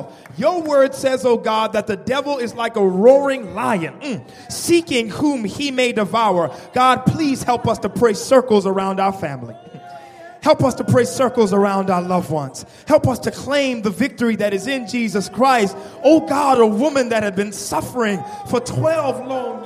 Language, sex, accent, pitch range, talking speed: English, male, American, 195-300 Hz, 185 wpm